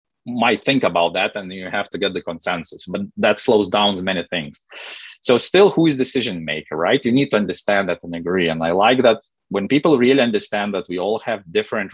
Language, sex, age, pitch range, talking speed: English, male, 30-49, 95-140 Hz, 220 wpm